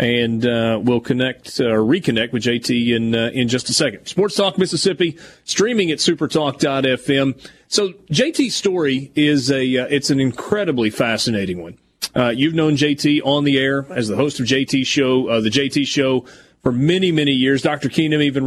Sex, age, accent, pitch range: male, 30-49, American, 130-155 Hz